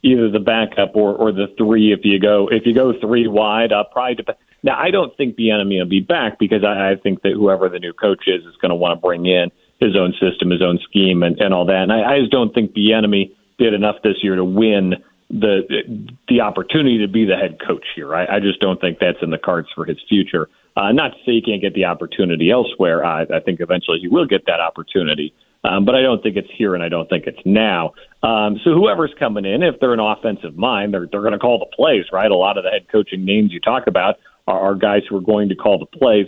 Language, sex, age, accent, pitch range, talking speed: English, male, 40-59, American, 95-110 Hz, 270 wpm